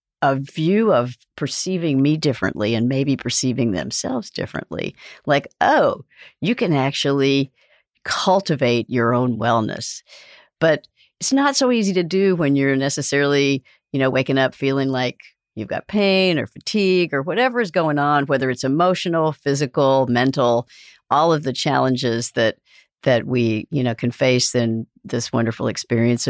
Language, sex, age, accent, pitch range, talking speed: English, female, 60-79, American, 120-160 Hz, 150 wpm